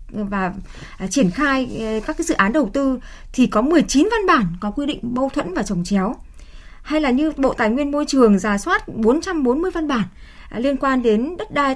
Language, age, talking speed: Vietnamese, 20-39, 220 wpm